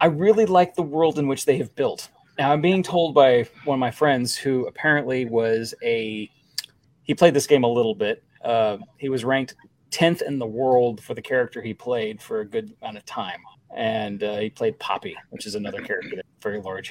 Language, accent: English, American